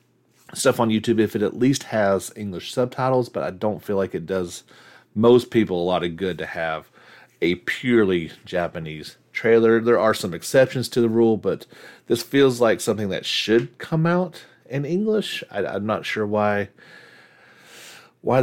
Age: 40-59